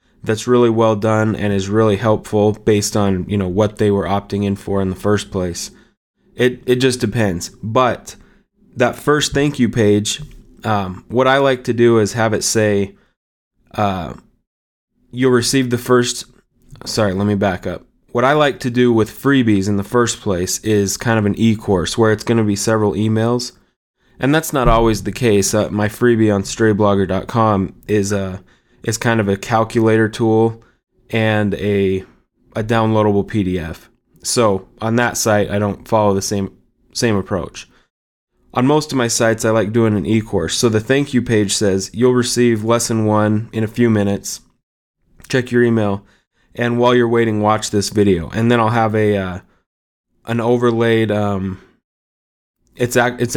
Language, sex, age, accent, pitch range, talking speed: English, male, 20-39, American, 100-120 Hz, 175 wpm